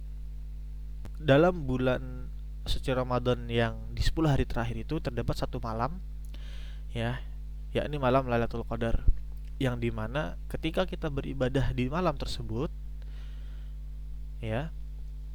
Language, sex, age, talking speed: English, male, 20-39, 105 wpm